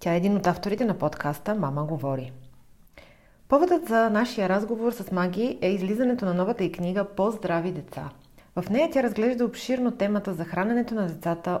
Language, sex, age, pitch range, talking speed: Bulgarian, female, 30-49, 160-210 Hz, 175 wpm